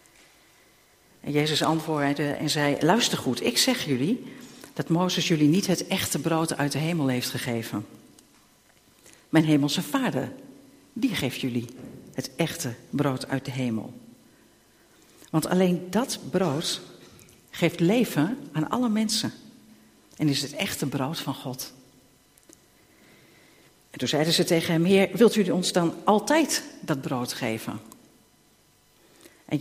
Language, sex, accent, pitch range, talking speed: Dutch, female, Dutch, 145-185 Hz, 135 wpm